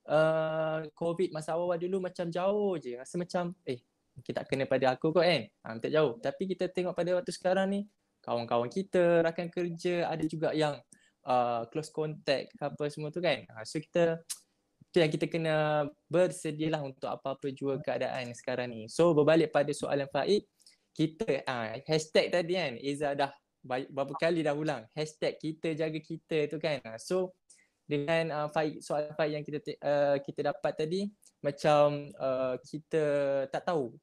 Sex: male